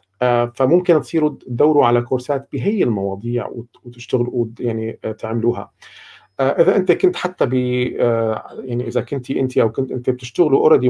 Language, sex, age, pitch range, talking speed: Arabic, male, 40-59, 120-135 Hz, 145 wpm